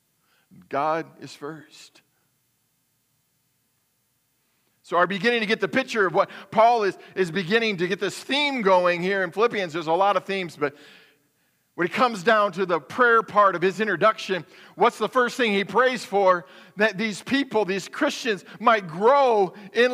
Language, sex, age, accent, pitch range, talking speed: English, male, 40-59, American, 160-225 Hz, 170 wpm